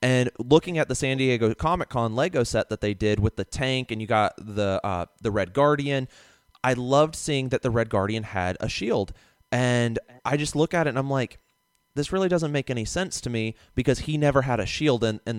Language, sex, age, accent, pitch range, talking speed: English, male, 30-49, American, 105-130 Hz, 220 wpm